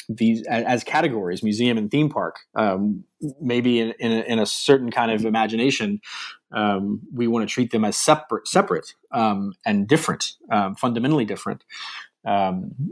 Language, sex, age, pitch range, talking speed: English, male, 30-49, 105-130 Hz, 160 wpm